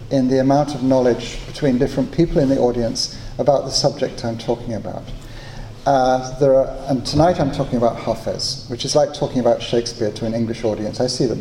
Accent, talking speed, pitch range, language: British, 205 wpm, 115-140 Hz, English